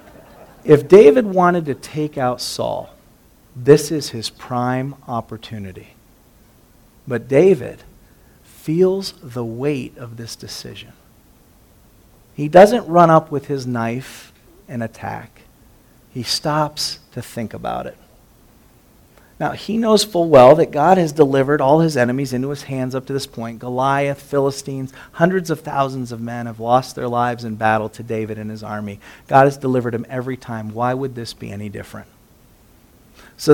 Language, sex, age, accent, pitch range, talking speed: English, male, 40-59, American, 120-185 Hz, 150 wpm